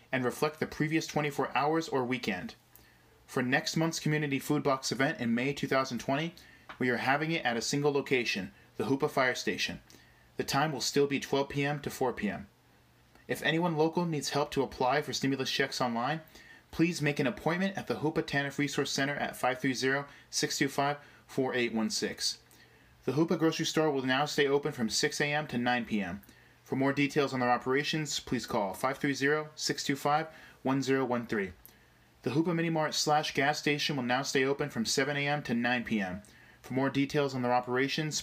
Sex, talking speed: male, 170 wpm